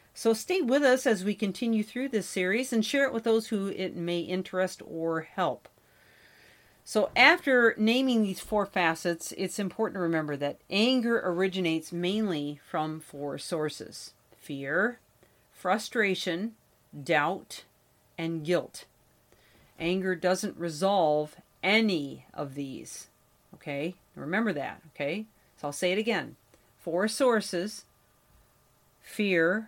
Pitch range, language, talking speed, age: 165-215 Hz, English, 125 wpm, 40-59